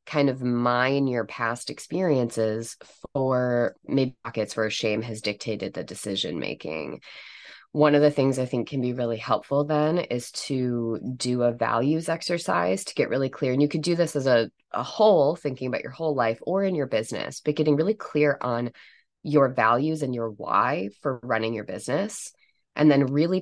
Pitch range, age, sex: 115-140 Hz, 20-39, female